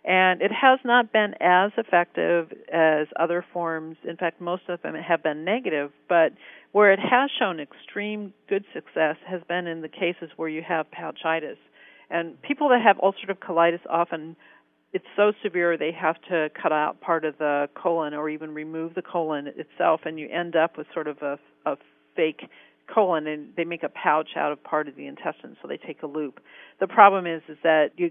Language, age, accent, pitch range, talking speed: English, 50-69, American, 155-185 Hz, 200 wpm